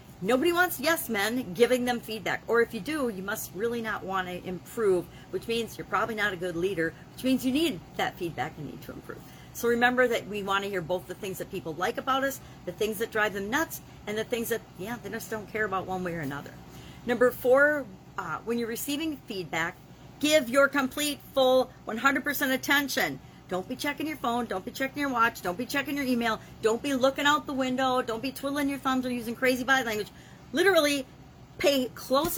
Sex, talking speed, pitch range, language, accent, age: female, 220 wpm, 190-265 Hz, English, American, 40-59